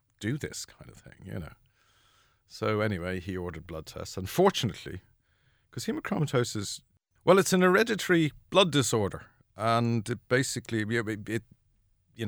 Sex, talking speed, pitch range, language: male, 120 wpm, 90-115 Hz, English